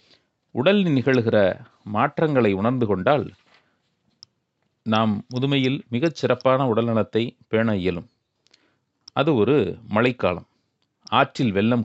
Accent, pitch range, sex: native, 105-135 Hz, male